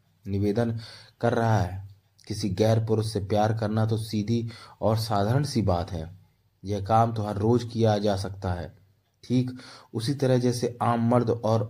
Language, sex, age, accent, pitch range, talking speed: Hindi, male, 30-49, native, 105-120 Hz, 170 wpm